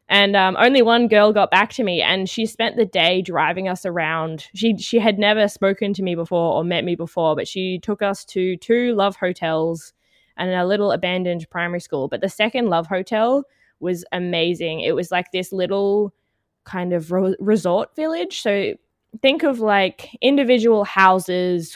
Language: English